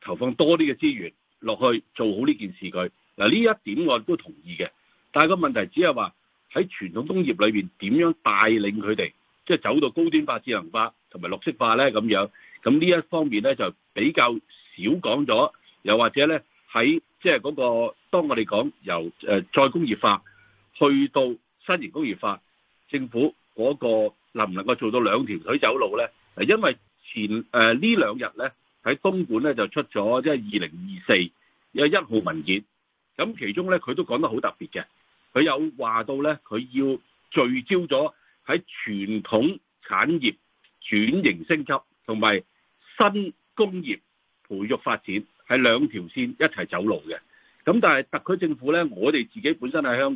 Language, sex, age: Chinese, male, 50-69